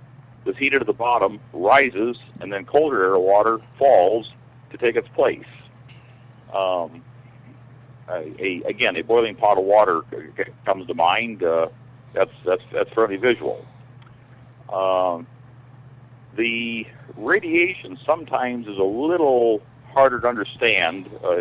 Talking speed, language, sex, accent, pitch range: 125 wpm, English, male, American, 115-130 Hz